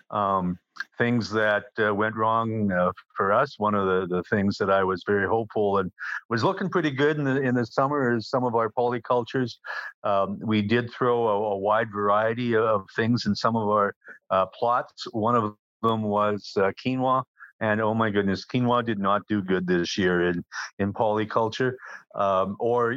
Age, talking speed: 50-69, 190 wpm